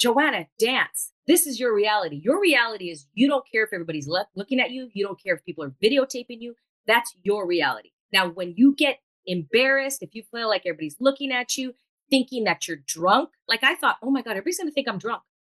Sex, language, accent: female, English, American